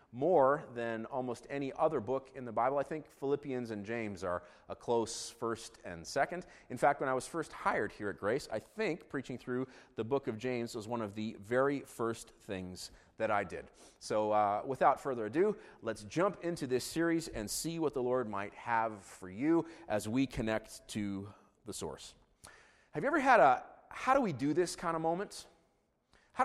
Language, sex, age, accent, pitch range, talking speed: English, male, 30-49, American, 115-150 Hz, 190 wpm